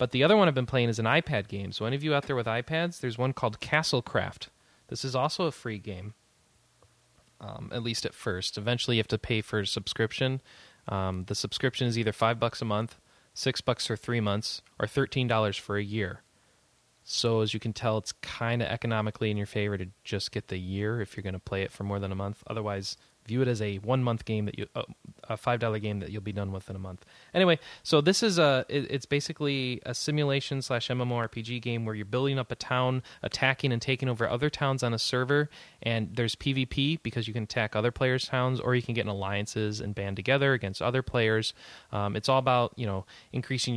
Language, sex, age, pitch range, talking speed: English, male, 20-39, 105-130 Hz, 230 wpm